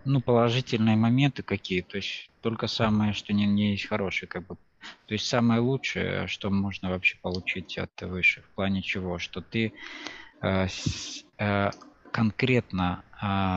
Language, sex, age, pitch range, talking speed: Russian, male, 20-39, 95-110 Hz, 150 wpm